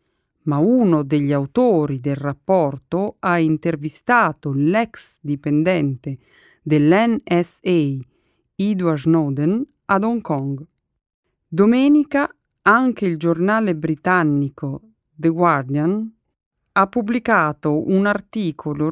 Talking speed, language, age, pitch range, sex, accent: 85 wpm, Italian, 40-59, 150-200 Hz, female, native